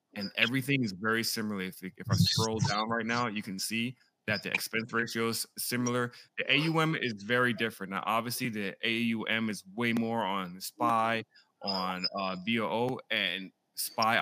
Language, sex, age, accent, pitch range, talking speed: English, male, 20-39, American, 105-120 Hz, 170 wpm